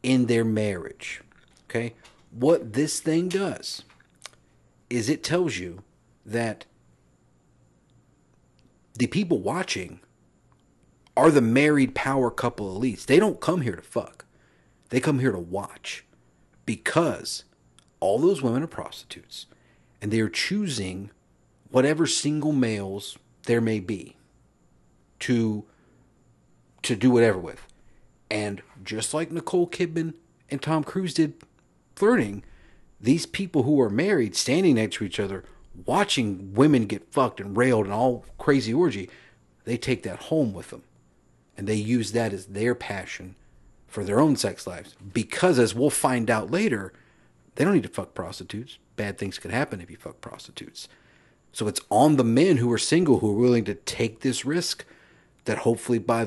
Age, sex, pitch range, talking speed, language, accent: 50-69, male, 100-140 Hz, 150 wpm, English, American